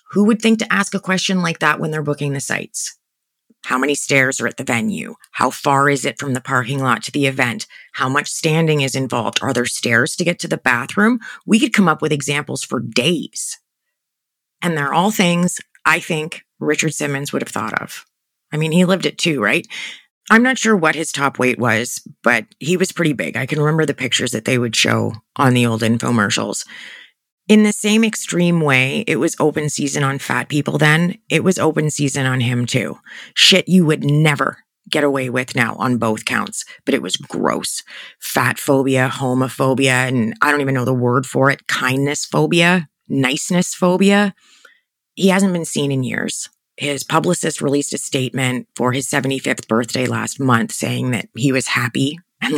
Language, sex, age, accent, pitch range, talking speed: English, female, 30-49, American, 130-175 Hz, 195 wpm